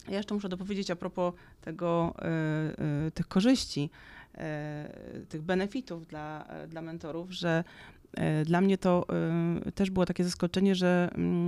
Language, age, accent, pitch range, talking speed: Polish, 30-49, native, 160-185 Hz, 115 wpm